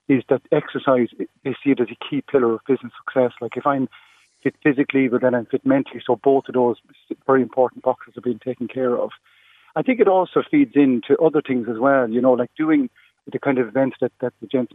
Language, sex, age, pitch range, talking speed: English, male, 40-59, 125-145 Hz, 230 wpm